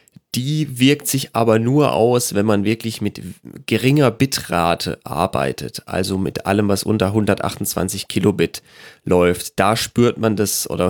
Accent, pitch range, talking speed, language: German, 95-115 Hz, 145 wpm, German